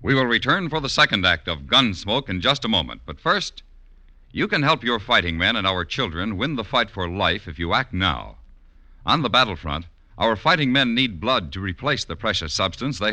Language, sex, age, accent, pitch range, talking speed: English, male, 60-79, American, 85-125 Hz, 215 wpm